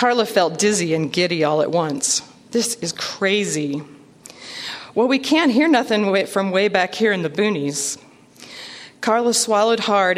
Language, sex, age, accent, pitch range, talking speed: English, female, 40-59, American, 155-205 Hz, 155 wpm